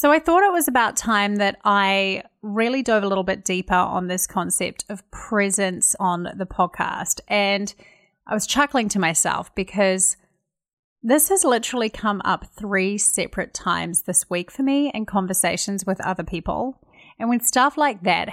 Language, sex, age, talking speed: English, female, 30-49, 170 wpm